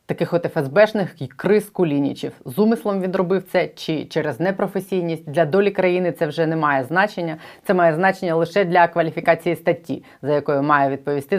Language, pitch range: Ukrainian, 160-195 Hz